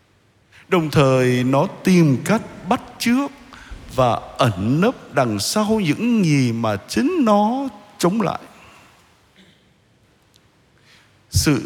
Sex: male